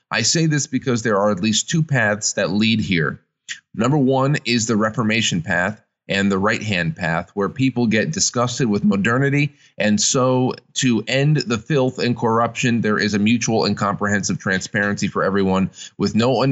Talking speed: 175 wpm